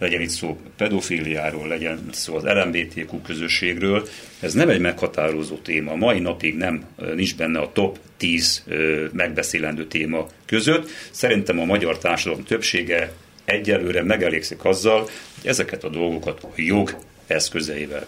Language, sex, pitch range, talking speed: Hungarian, male, 80-100 Hz, 135 wpm